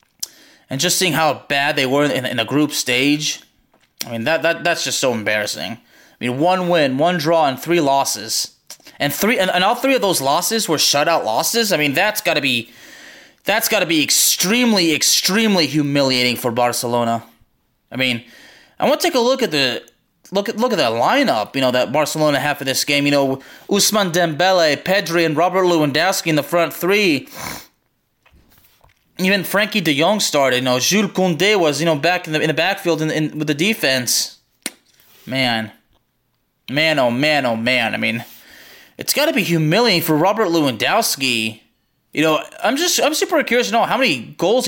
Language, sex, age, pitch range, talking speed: English, male, 20-39, 135-195 Hz, 190 wpm